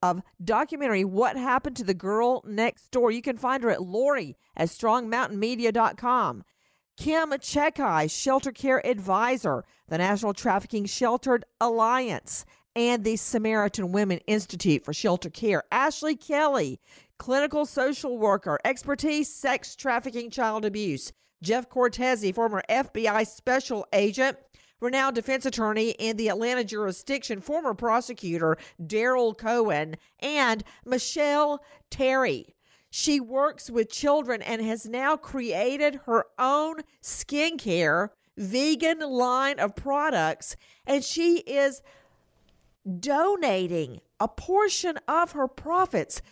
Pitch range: 220-295 Hz